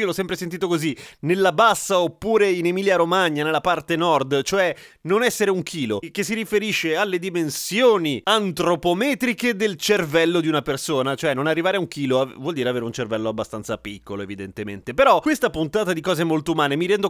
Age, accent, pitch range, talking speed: 30-49, native, 150-205 Hz, 185 wpm